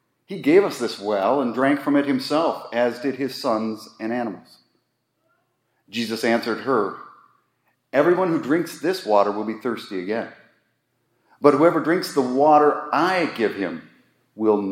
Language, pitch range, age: English, 120-155 Hz, 40-59